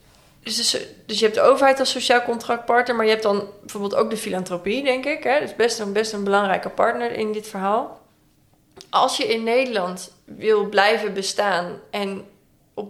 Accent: Dutch